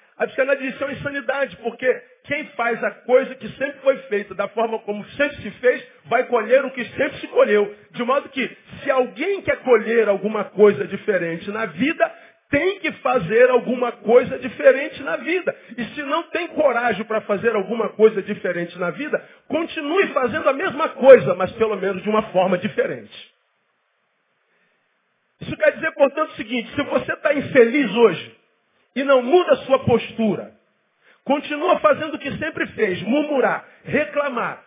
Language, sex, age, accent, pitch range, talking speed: Portuguese, male, 40-59, Brazilian, 210-280 Hz, 165 wpm